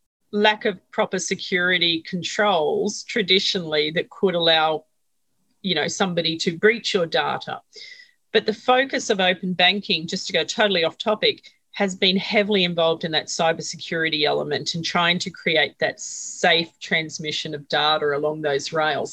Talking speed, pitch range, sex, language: 150 wpm, 170-210 Hz, female, English